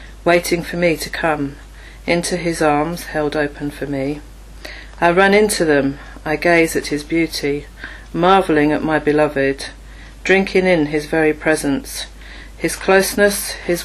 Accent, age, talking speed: British, 40-59, 145 wpm